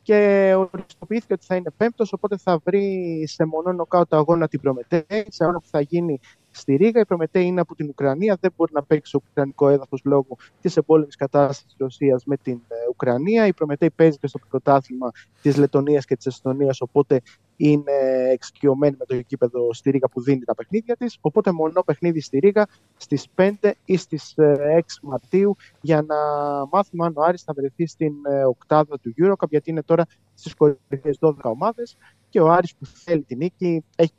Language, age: Greek, 20-39